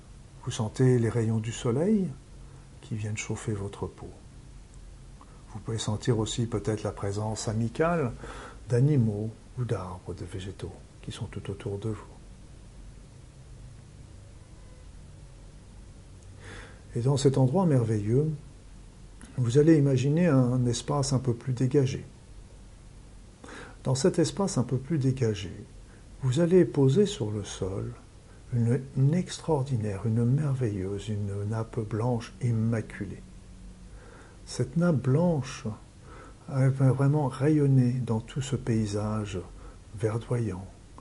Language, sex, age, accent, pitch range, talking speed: French, male, 50-69, French, 105-130 Hz, 110 wpm